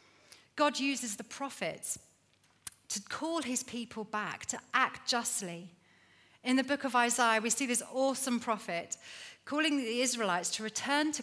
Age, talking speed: 40-59, 150 wpm